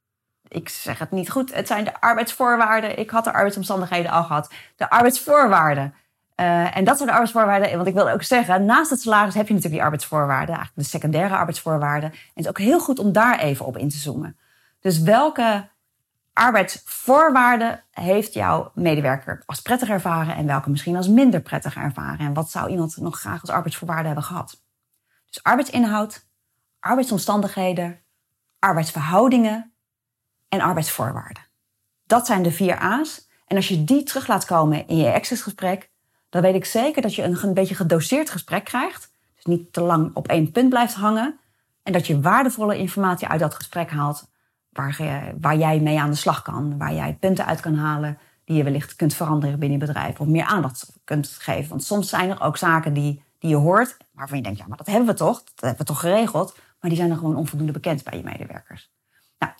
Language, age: Dutch, 30-49